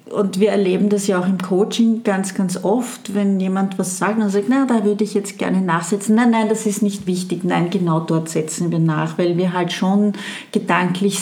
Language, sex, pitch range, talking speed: German, female, 170-200 Hz, 220 wpm